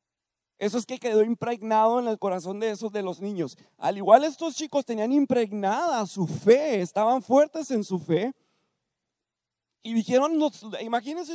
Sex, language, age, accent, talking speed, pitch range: male, Spanish, 40-59, Mexican, 155 wpm, 195-280 Hz